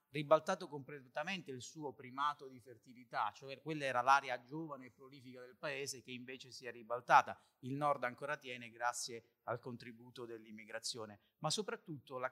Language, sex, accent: Italian, male, native